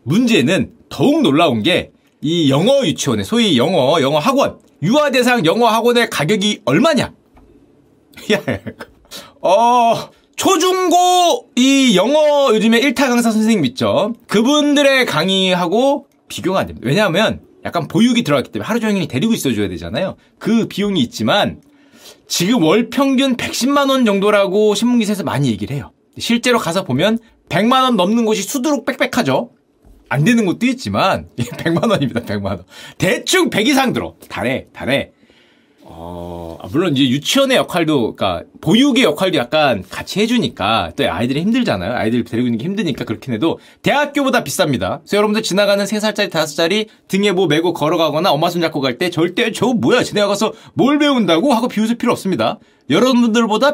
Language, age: Korean, 30-49